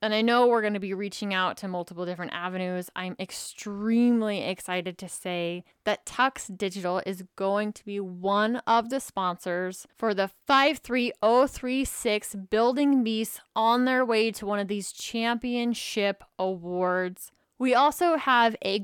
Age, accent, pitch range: 20-39, American, 180-220 Hz